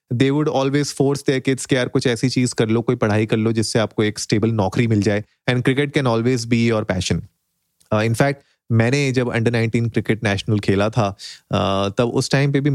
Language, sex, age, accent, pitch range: Hindi, male, 30-49, native, 110-135 Hz